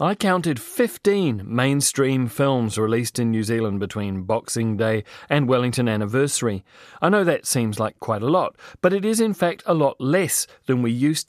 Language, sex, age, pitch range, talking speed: English, male, 30-49, 115-150 Hz, 180 wpm